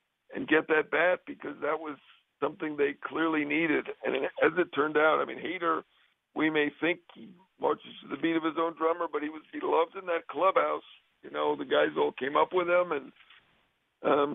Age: 50-69